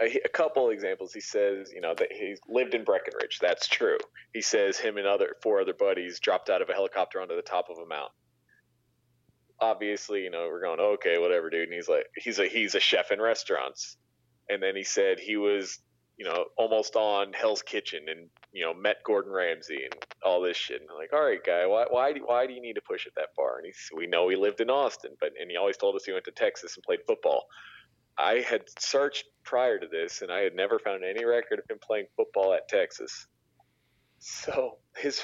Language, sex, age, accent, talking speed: English, male, 30-49, American, 225 wpm